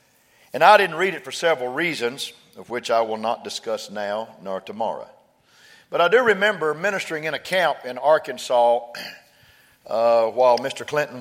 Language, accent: English, American